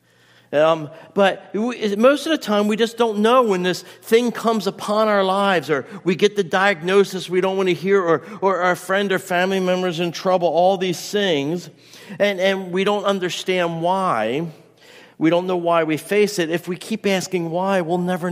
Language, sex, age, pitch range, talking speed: English, male, 50-69, 150-195 Hz, 200 wpm